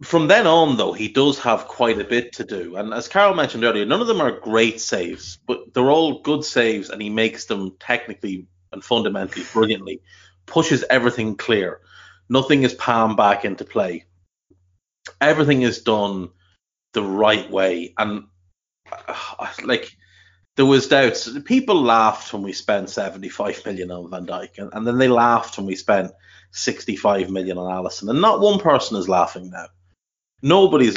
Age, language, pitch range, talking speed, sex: 30-49, English, 95-120 Hz, 175 wpm, male